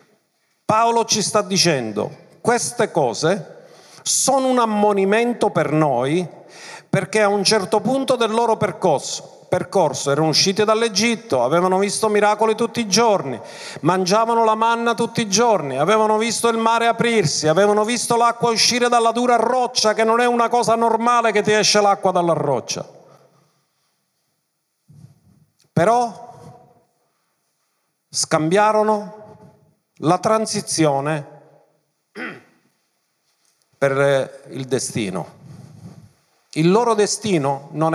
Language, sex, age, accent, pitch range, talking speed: Italian, male, 50-69, native, 165-230 Hz, 110 wpm